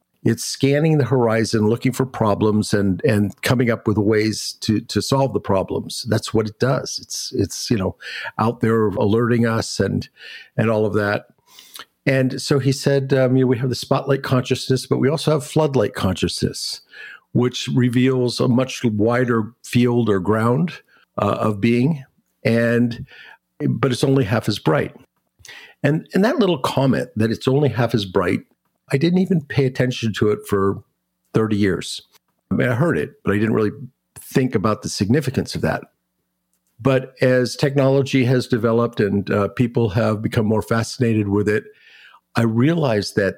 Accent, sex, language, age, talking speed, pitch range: American, male, English, 50-69, 170 wpm, 105-130 Hz